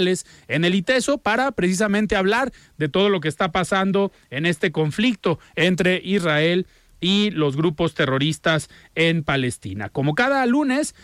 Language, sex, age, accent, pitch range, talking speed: Spanish, male, 40-59, Mexican, 160-210 Hz, 140 wpm